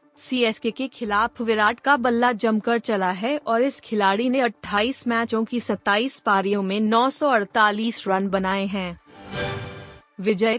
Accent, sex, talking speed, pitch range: native, female, 135 wpm, 210-245 Hz